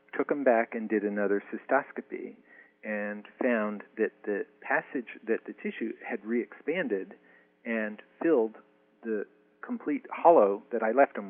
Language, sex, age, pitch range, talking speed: English, male, 50-69, 105-130 Hz, 140 wpm